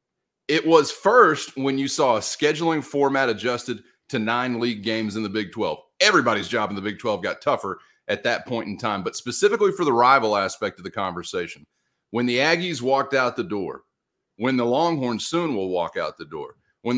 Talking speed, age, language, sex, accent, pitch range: 200 wpm, 40-59, English, male, American, 120-165 Hz